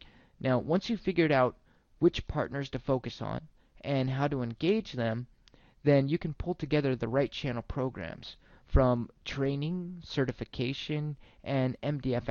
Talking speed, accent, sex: 140 wpm, American, male